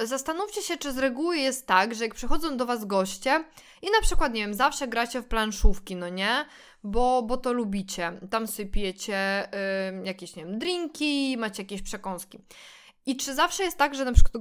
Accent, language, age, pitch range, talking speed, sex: native, Polish, 20-39, 210-275 Hz, 185 wpm, female